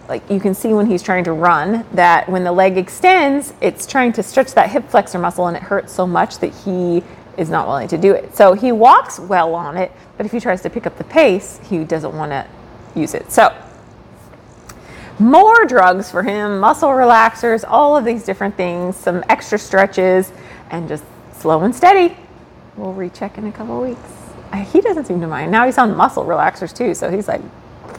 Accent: American